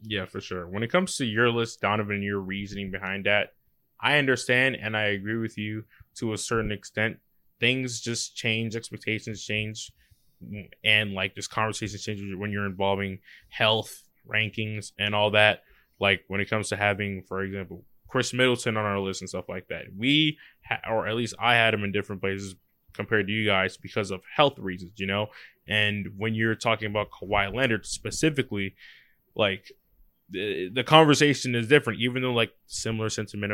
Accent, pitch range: American, 100-125 Hz